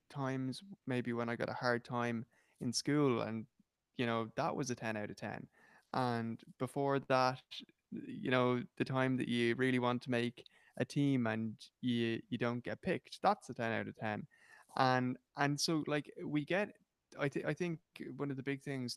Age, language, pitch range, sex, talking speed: 20-39, English, 115-135 Hz, male, 195 wpm